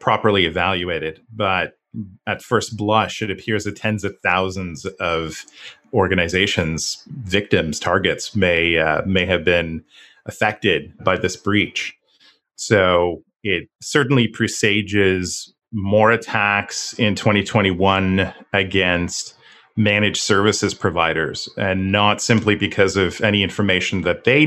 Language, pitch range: English, 95-105 Hz